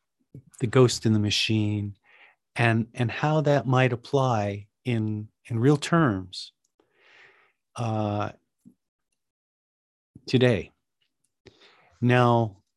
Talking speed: 85 wpm